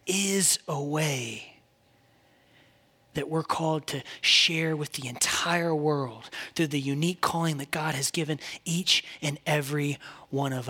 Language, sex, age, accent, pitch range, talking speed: English, male, 20-39, American, 150-195 Hz, 140 wpm